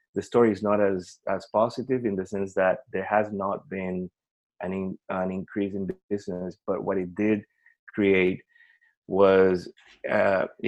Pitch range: 95-105 Hz